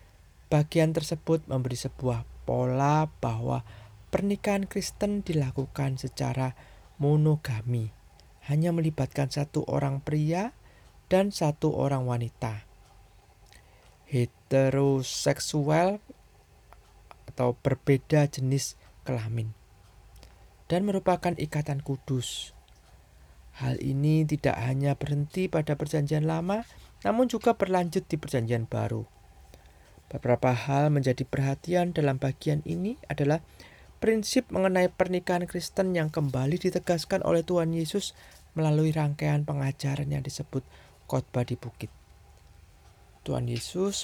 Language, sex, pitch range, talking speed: Indonesian, male, 115-160 Hz, 95 wpm